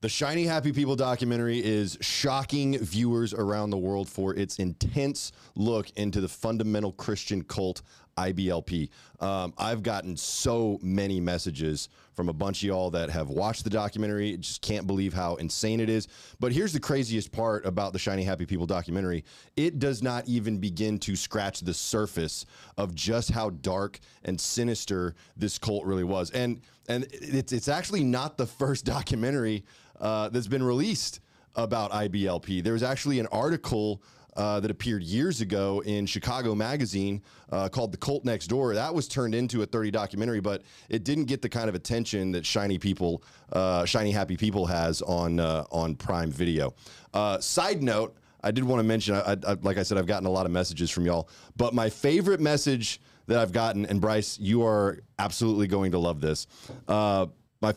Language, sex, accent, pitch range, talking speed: English, male, American, 95-120 Hz, 180 wpm